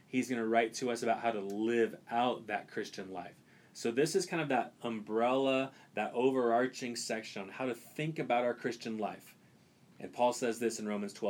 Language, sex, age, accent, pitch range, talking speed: English, male, 30-49, American, 105-125 Hz, 200 wpm